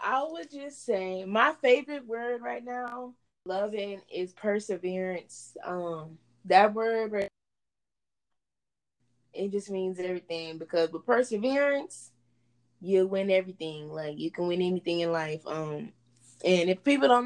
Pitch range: 170-240 Hz